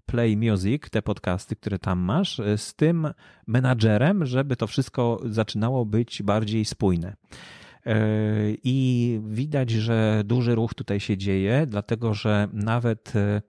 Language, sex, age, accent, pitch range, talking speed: Polish, male, 30-49, native, 105-125 Hz, 125 wpm